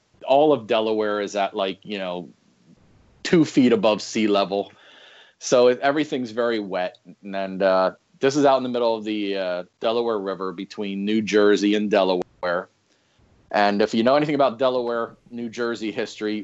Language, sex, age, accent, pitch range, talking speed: English, male, 40-59, American, 100-125 Hz, 165 wpm